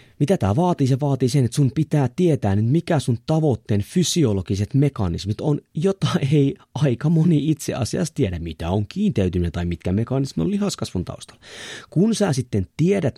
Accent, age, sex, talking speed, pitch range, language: native, 30-49, male, 170 wpm, 110-165 Hz, Finnish